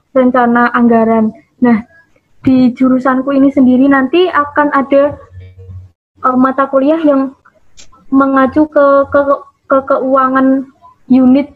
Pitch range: 255-285 Hz